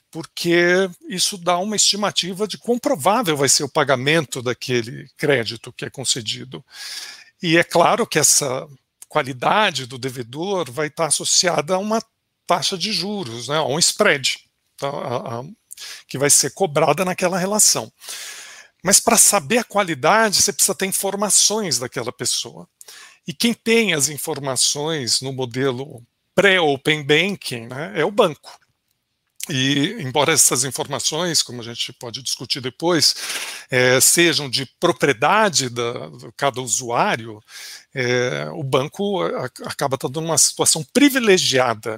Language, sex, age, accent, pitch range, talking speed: Portuguese, male, 50-69, Brazilian, 135-190 Hz, 135 wpm